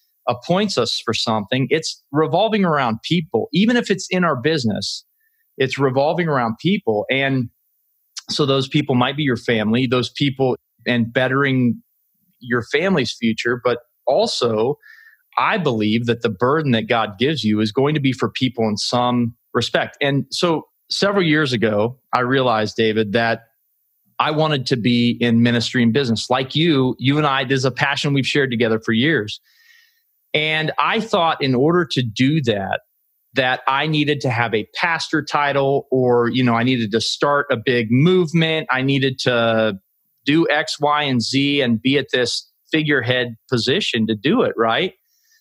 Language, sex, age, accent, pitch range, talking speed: English, male, 30-49, American, 120-155 Hz, 170 wpm